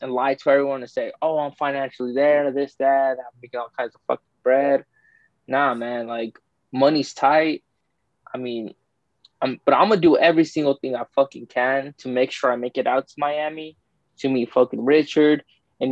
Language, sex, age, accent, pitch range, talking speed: English, male, 20-39, American, 125-150 Hz, 190 wpm